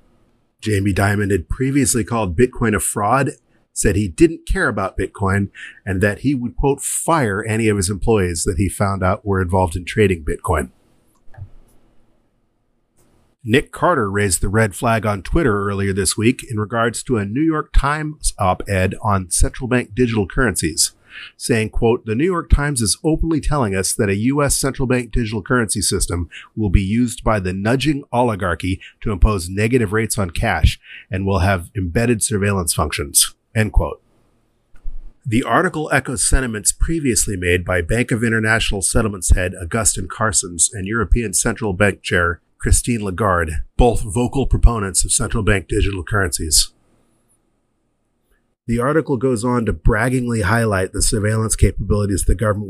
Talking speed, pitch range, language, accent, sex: 155 wpm, 100-120 Hz, English, American, male